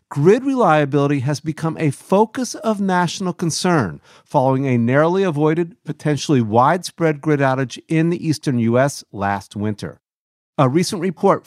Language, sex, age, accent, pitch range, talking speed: English, male, 50-69, American, 125-170 Hz, 135 wpm